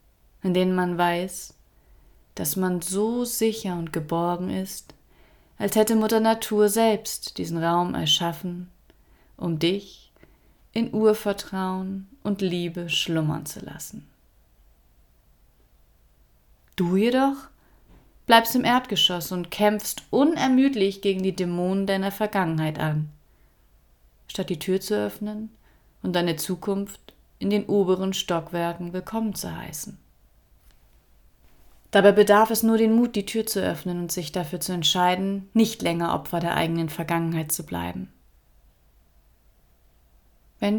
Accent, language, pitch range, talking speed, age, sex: German, German, 175-215 Hz, 120 wpm, 30-49, female